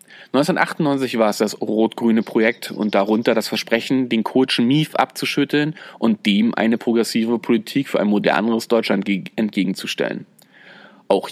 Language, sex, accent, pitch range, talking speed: German, male, German, 110-140 Hz, 135 wpm